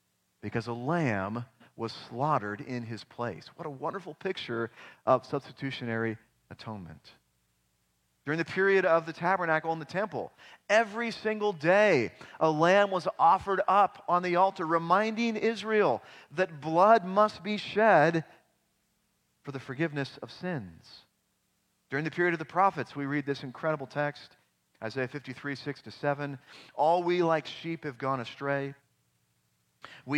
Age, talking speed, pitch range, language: 40-59, 135 wpm, 125-165 Hz, English